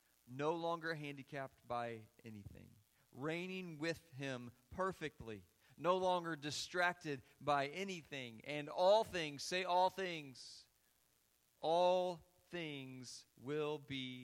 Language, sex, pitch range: English, male, 105-150 Hz